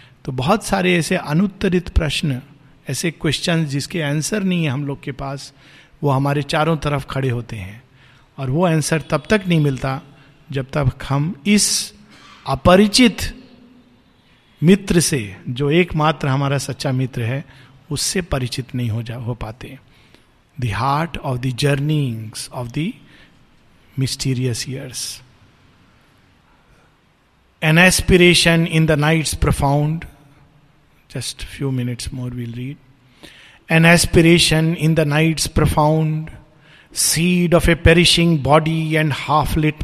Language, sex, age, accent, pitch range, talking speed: Hindi, male, 50-69, native, 135-160 Hz, 130 wpm